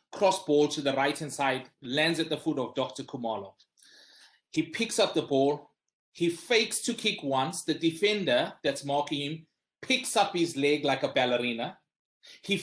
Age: 30-49